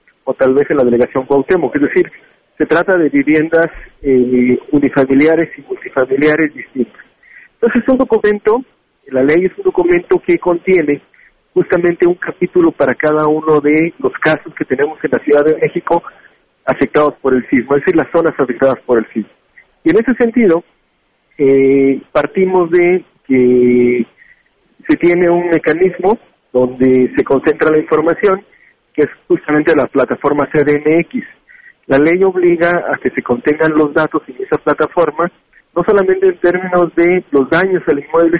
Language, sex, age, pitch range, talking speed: Spanish, male, 50-69, 140-180 Hz, 160 wpm